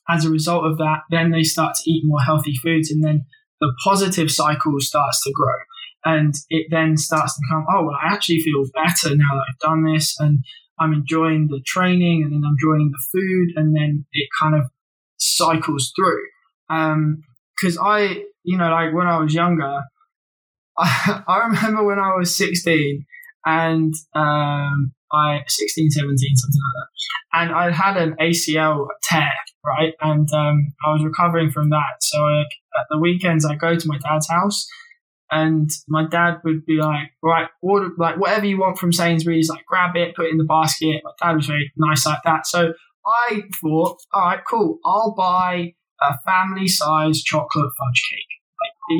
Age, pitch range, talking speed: 20-39, 150-175 Hz, 180 wpm